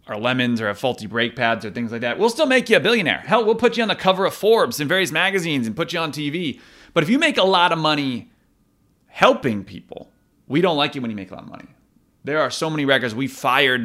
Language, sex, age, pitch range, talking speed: English, male, 30-49, 115-145 Hz, 270 wpm